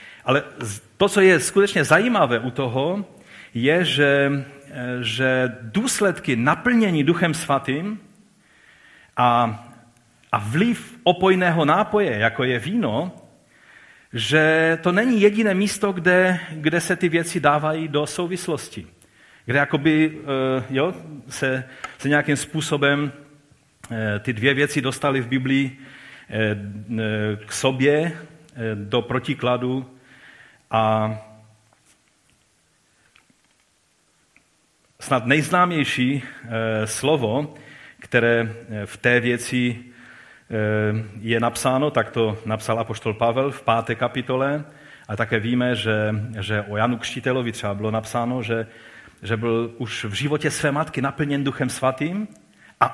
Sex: male